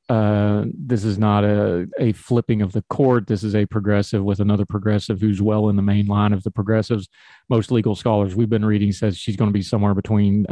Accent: American